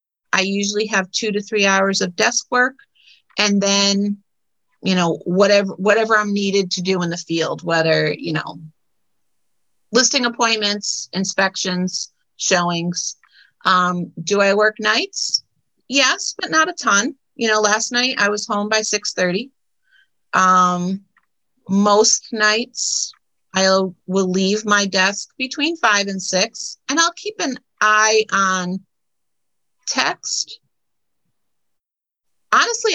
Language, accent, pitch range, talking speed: English, American, 190-235 Hz, 125 wpm